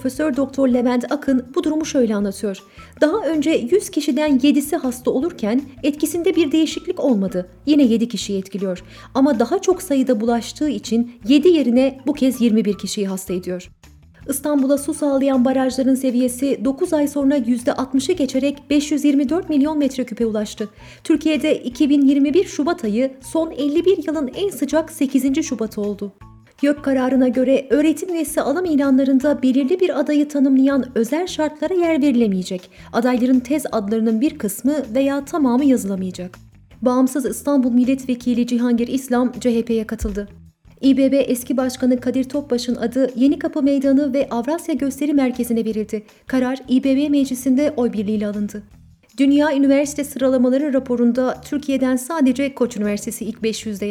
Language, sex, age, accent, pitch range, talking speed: Turkish, female, 30-49, native, 235-290 Hz, 135 wpm